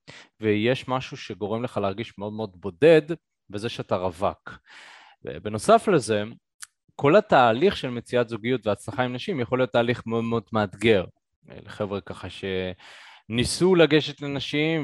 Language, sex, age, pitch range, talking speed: Hebrew, male, 20-39, 110-150 Hz, 130 wpm